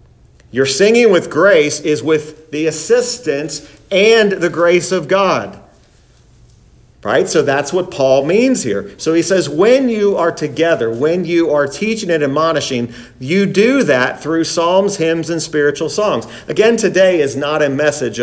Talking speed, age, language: 160 wpm, 40-59, English